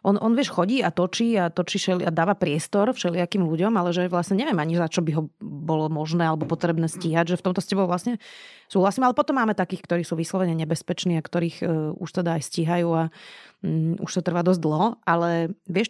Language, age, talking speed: Slovak, 30-49, 220 wpm